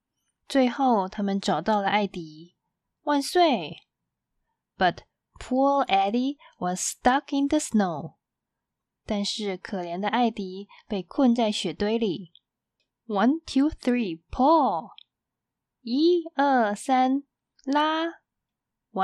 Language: Chinese